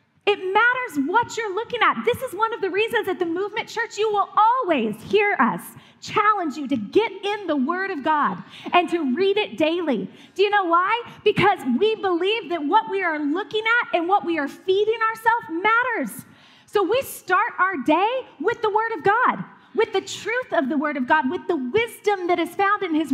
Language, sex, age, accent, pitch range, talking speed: English, female, 30-49, American, 300-430 Hz, 210 wpm